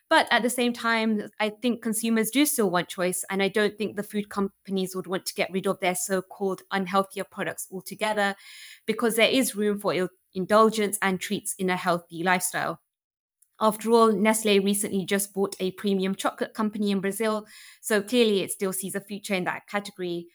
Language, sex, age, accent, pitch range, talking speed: English, female, 20-39, British, 185-225 Hz, 190 wpm